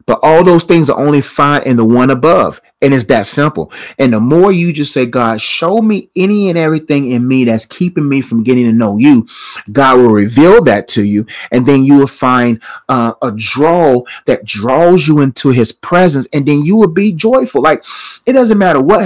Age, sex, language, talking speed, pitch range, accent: 30-49, male, English, 215 wpm, 120-155 Hz, American